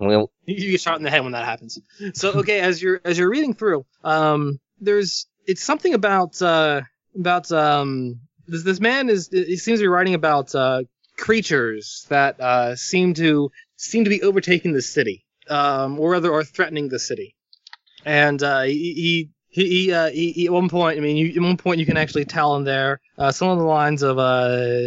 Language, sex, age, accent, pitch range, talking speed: English, male, 20-39, American, 130-175 Hz, 205 wpm